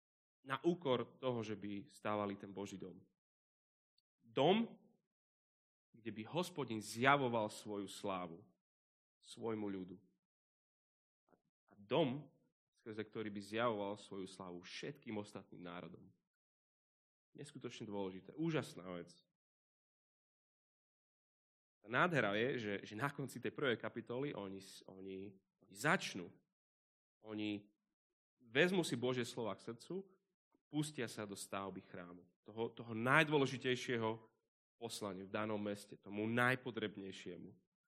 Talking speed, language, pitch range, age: 105 wpm, Slovak, 100-130 Hz, 30-49